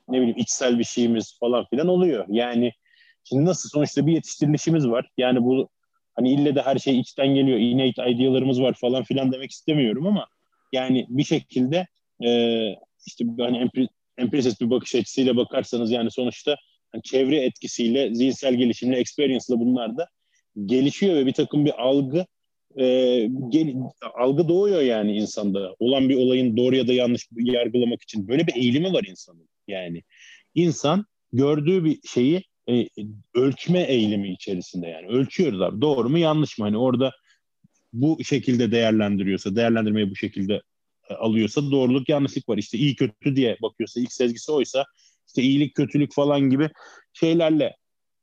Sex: male